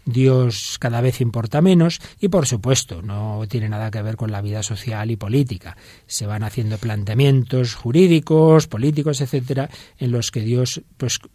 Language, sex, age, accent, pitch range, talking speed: Spanish, male, 40-59, Spanish, 110-155 Hz, 165 wpm